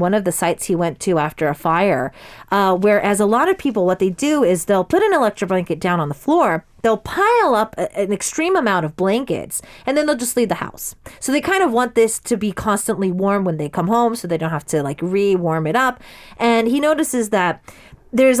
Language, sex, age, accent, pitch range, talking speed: English, female, 30-49, American, 170-245 Hz, 230 wpm